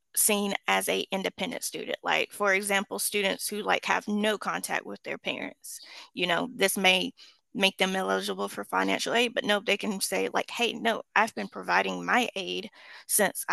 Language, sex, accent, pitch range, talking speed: English, female, American, 190-235 Hz, 180 wpm